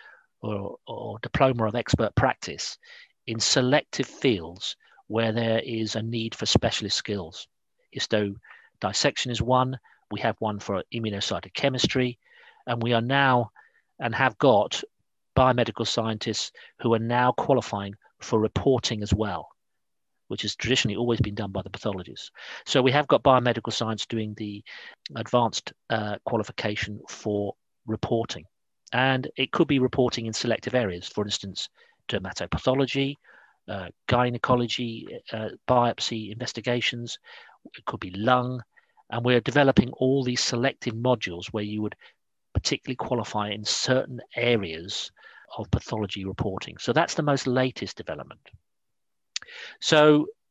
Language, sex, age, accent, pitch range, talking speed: English, male, 40-59, British, 105-130 Hz, 130 wpm